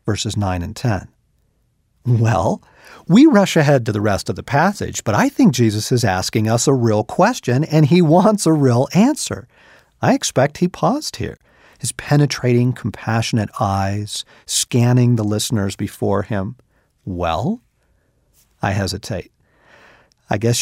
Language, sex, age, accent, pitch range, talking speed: English, male, 50-69, American, 105-155 Hz, 145 wpm